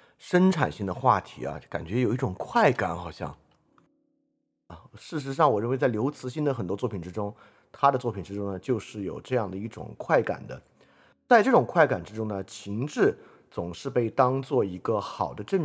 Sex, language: male, Chinese